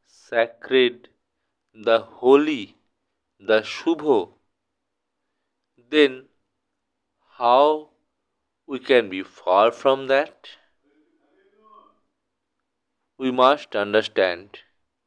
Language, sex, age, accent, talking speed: Bengali, male, 50-69, native, 65 wpm